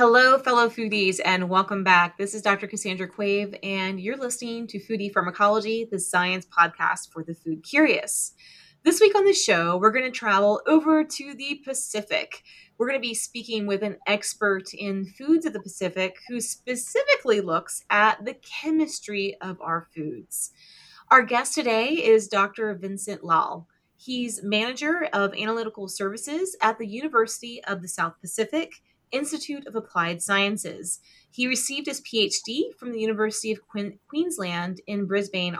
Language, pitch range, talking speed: English, 195-270 Hz, 155 wpm